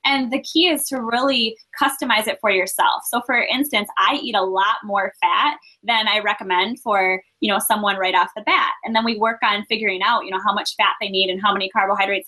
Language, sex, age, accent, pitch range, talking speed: English, female, 10-29, American, 195-270 Hz, 235 wpm